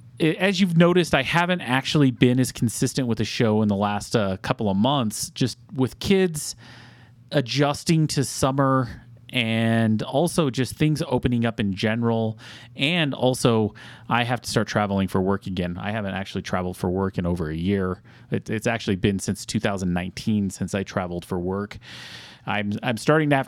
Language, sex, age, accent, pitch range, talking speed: English, male, 30-49, American, 110-135 Hz, 175 wpm